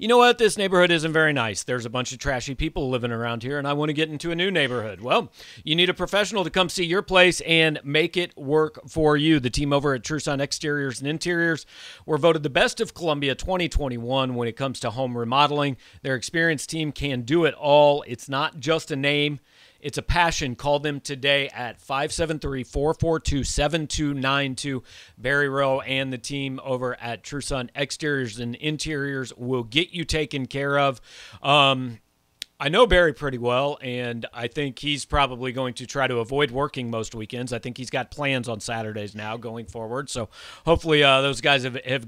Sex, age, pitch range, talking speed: male, 40-59, 125-155 Hz, 195 wpm